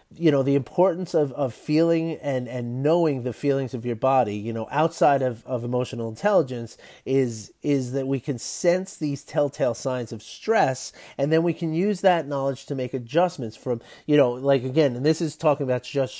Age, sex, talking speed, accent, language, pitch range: 30-49, male, 200 wpm, American, English, 120-145 Hz